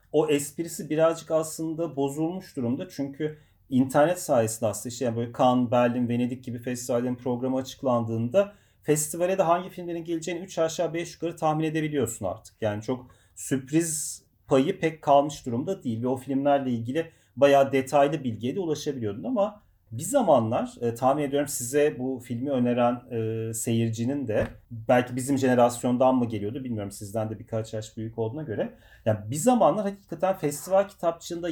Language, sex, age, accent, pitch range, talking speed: Turkish, male, 40-59, native, 120-160 Hz, 155 wpm